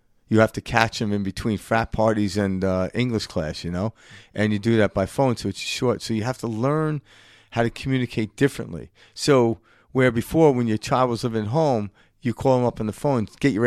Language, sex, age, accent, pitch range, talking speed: English, male, 50-69, American, 100-125 Hz, 225 wpm